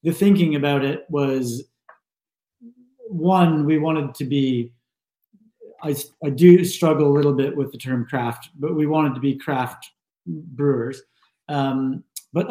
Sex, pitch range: male, 130-155 Hz